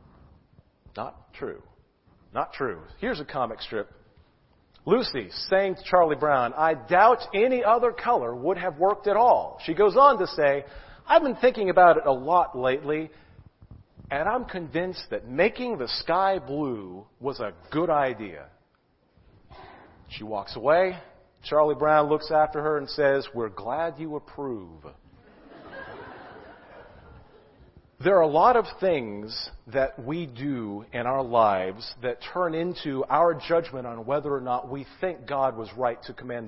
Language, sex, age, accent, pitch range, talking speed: English, male, 40-59, American, 130-185 Hz, 150 wpm